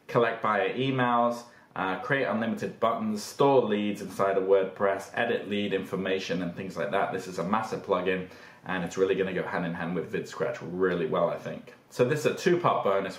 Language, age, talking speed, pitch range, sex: English, 20-39, 205 wpm, 95-120 Hz, male